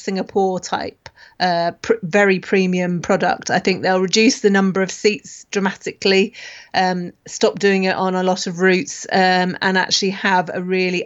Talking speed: 170 wpm